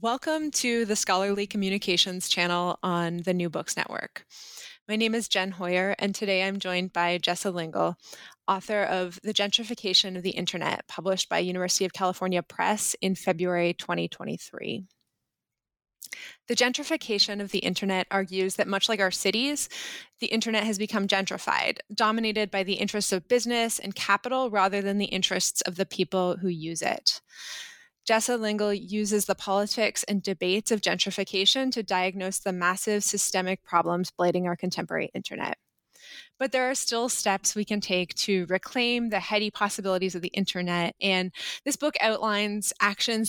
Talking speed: 155 wpm